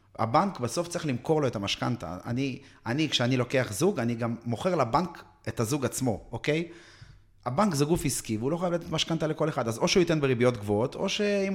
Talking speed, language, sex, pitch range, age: 205 wpm, Hebrew, male, 120-155 Hz, 30-49